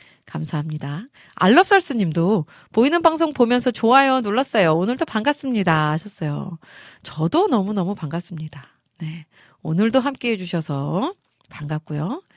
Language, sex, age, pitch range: Korean, female, 30-49, 160-260 Hz